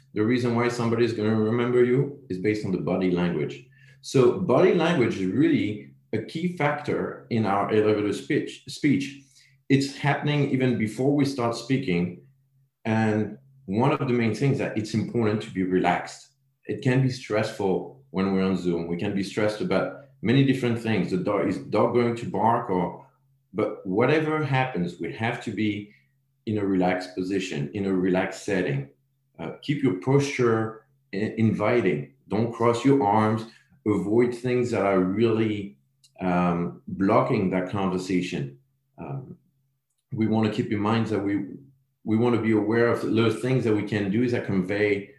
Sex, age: male, 40-59